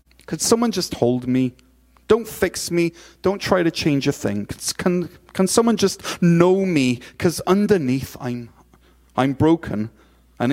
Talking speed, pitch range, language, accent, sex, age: 150 wpm, 125-195 Hz, English, British, male, 30-49